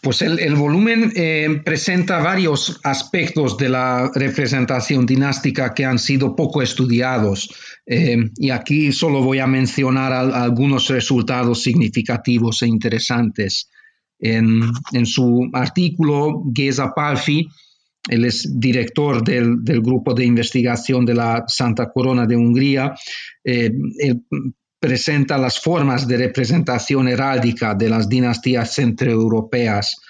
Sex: male